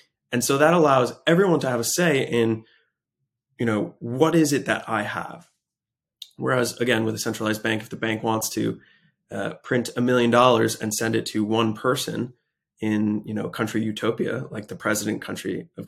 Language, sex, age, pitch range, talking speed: English, male, 20-39, 110-145 Hz, 190 wpm